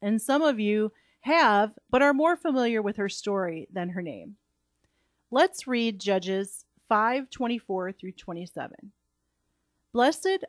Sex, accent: female, American